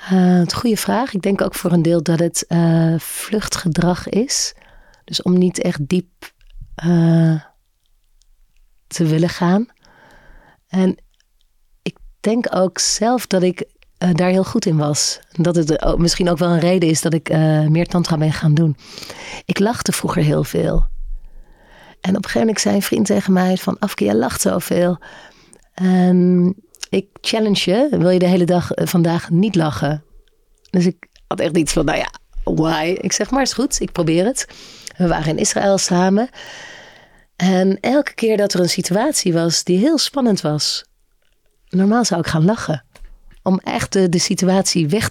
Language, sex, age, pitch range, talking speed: Dutch, female, 40-59, 160-195 Hz, 175 wpm